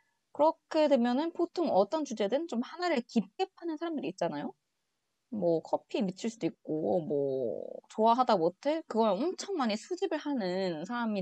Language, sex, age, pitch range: Korean, female, 20-39, 180-270 Hz